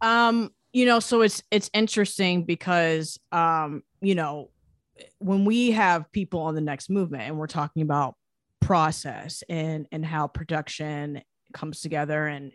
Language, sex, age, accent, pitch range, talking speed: English, female, 30-49, American, 160-195 Hz, 150 wpm